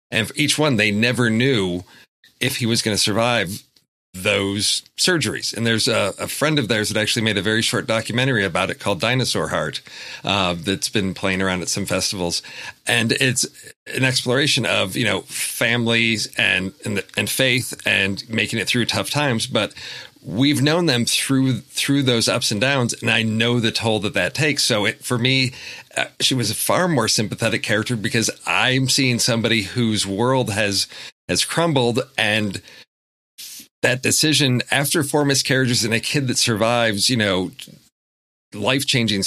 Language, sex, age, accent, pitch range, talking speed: English, male, 40-59, American, 105-130 Hz, 175 wpm